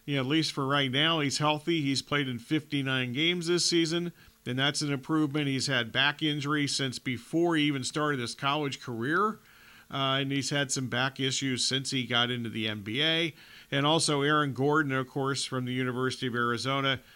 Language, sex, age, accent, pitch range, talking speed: English, male, 40-59, American, 125-150 Hz, 190 wpm